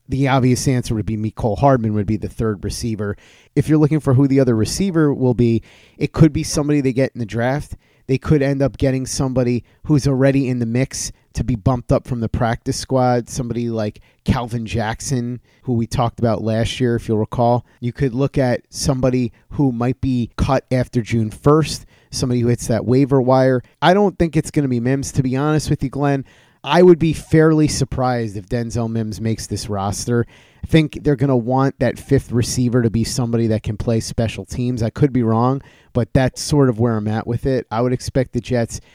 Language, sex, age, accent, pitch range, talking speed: English, male, 30-49, American, 115-135 Hz, 215 wpm